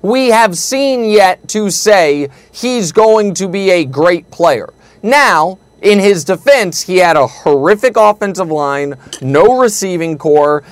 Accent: American